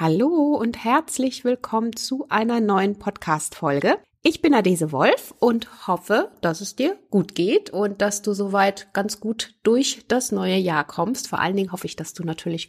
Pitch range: 165-220 Hz